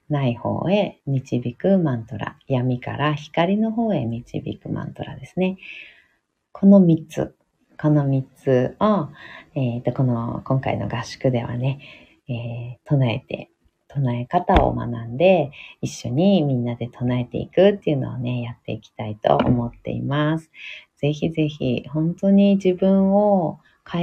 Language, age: Japanese, 40-59